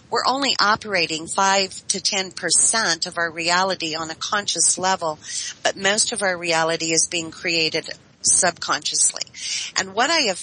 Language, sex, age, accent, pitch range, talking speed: English, female, 40-59, American, 165-195 Hz, 155 wpm